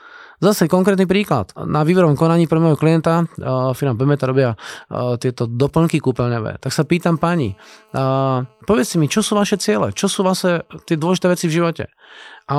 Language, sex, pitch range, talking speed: Slovak, male, 140-175 Hz, 165 wpm